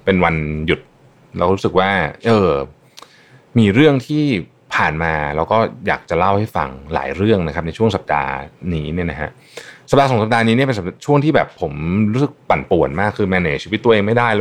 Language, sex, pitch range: Thai, male, 85-140 Hz